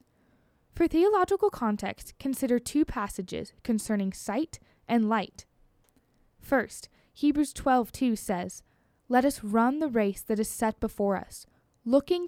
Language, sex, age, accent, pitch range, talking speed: English, female, 10-29, American, 205-270 Hz, 120 wpm